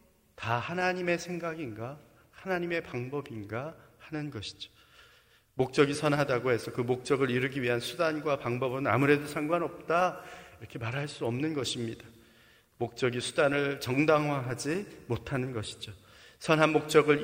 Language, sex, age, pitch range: Korean, male, 30-49, 125-165 Hz